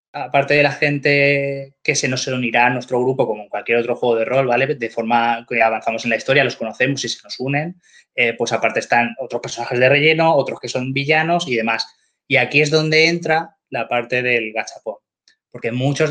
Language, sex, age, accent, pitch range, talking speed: Spanish, male, 20-39, Spanish, 120-145 Hz, 210 wpm